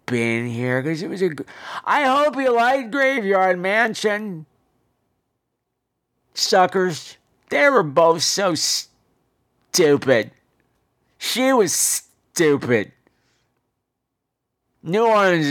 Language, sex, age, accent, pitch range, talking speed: English, male, 50-69, American, 120-175 Hz, 100 wpm